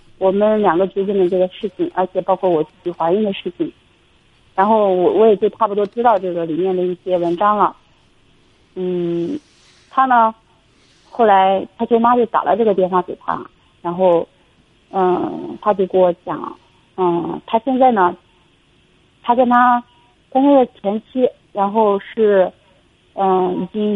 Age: 40-59